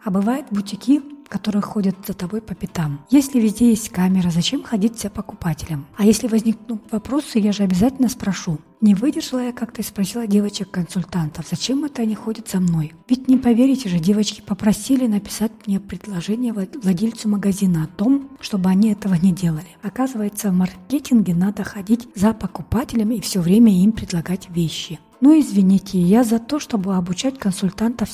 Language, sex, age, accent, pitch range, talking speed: Russian, female, 30-49, native, 185-230 Hz, 165 wpm